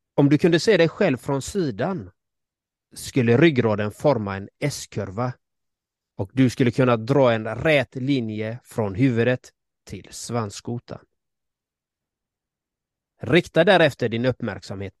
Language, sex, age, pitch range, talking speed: Swedish, male, 30-49, 105-145 Hz, 115 wpm